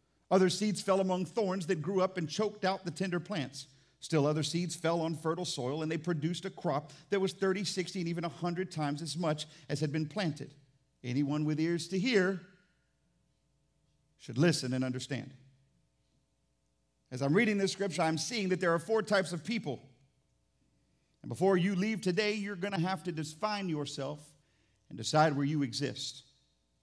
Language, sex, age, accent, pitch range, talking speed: English, male, 50-69, American, 130-180 Hz, 180 wpm